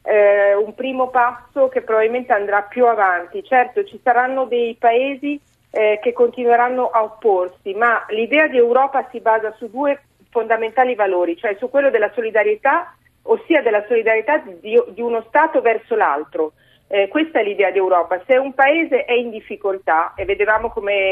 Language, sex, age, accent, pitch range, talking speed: Italian, female, 40-59, native, 205-265 Hz, 160 wpm